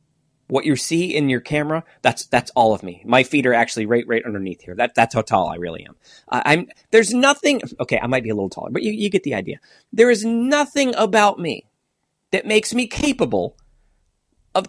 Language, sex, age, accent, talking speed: English, male, 40-59, American, 220 wpm